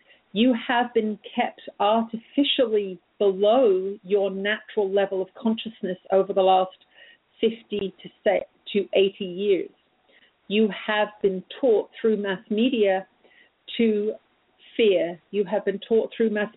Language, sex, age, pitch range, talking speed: English, female, 50-69, 195-225 Hz, 120 wpm